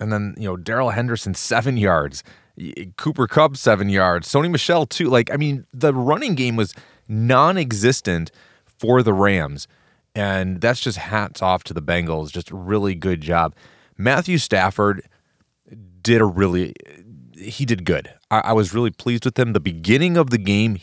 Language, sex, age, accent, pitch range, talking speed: English, male, 30-49, American, 100-130 Hz, 170 wpm